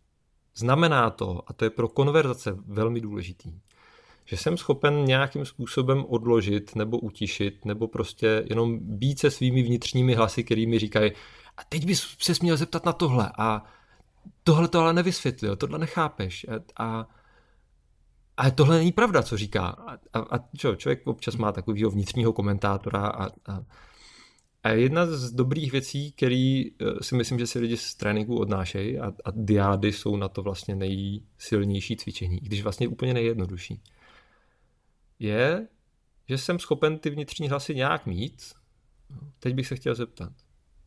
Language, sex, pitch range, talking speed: Czech, male, 105-140 Hz, 150 wpm